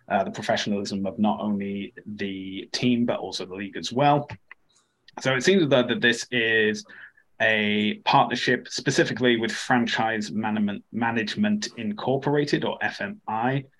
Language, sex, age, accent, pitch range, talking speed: English, male, 20-39, British, 105-130 Hz, 130 wpm